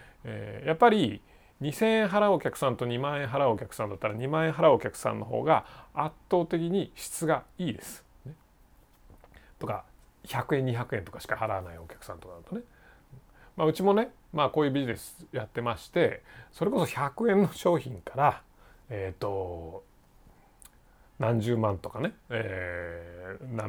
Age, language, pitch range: 40-59, Japanese, 110-170 Hz